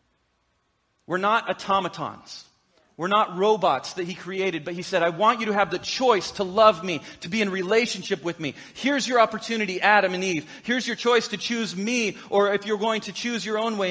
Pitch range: 190-245 Hz